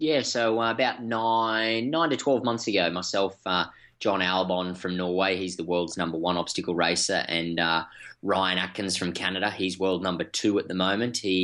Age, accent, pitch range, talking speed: 20-39, Australian, 90-105 Hz, 190 wpm